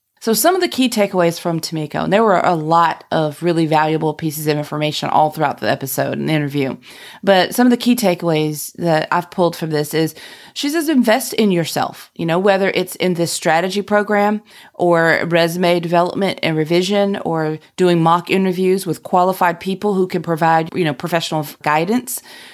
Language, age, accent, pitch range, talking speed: English, 30-49, American, 165-210 Hz, 185 wpm